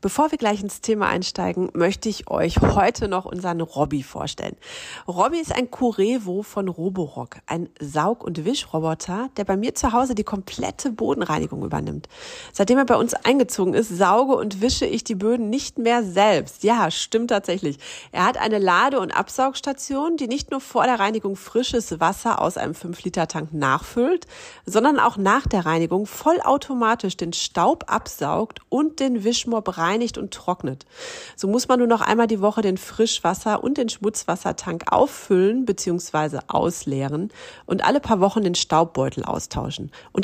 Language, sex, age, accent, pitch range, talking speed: German, female, 40-59, German, 180-245 Hz, 160 wpm